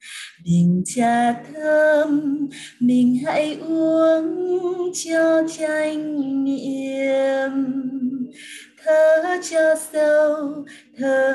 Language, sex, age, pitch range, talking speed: Vietnamese, female, 20-39, 240-310 Hz, 70 wpm